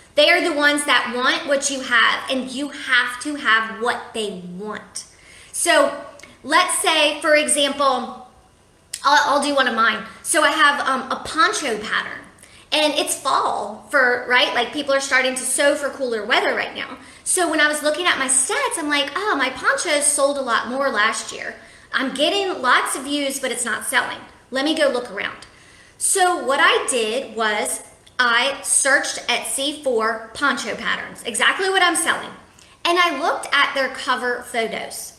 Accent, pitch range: American, 245-300 Hz